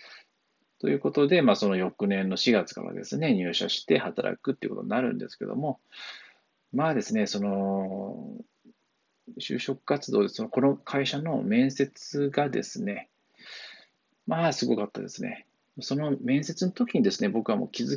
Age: 40-59